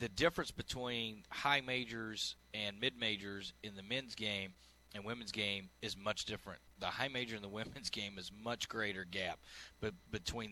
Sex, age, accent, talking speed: male, 30-49, American, 175 wpm